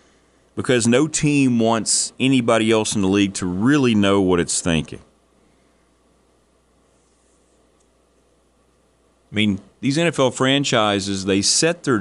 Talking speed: 115 wpm